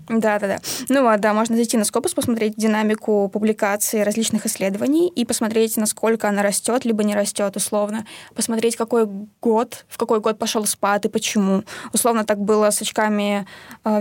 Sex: female